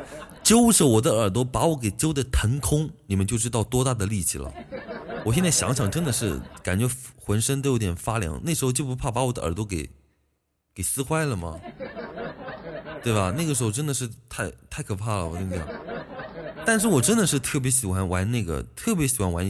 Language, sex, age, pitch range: Chinese, male, 20-39, 95-145 Hz